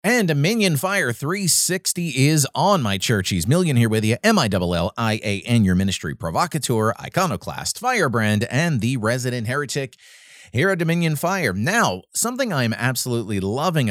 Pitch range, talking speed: 100-150 Hz, 140 wpm